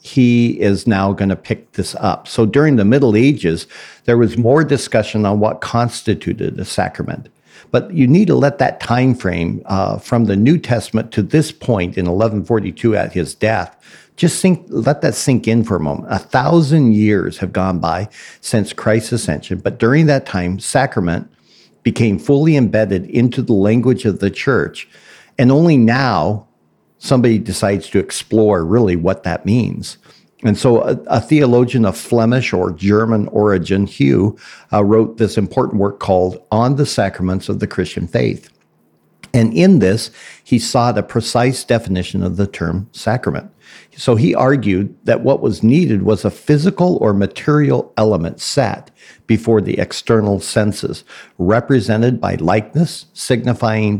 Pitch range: 100-125 Hz